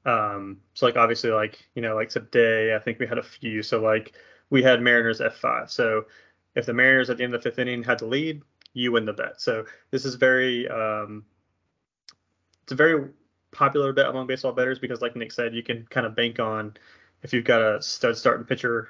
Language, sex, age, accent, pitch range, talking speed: English, male, 20-39, American, 110-130 Hz, 220 wpm